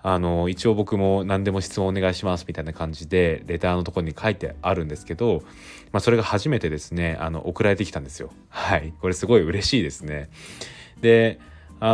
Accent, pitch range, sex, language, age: native, 80-105 Hz, male, Japanese, 20-39